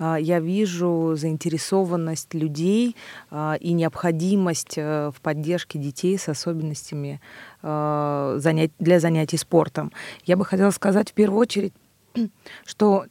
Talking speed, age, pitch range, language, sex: 100 wpm, 30-49, 155-185 Hz, Russian, female